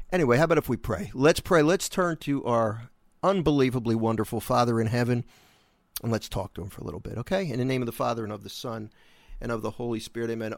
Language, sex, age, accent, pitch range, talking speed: English, male, 40-59, American, 115-155 Hz, 245 wpm